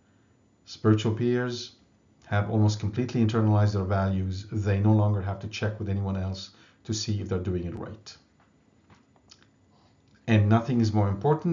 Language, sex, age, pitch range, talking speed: English, male, 50-69, 100-125 Hz, 150 wpm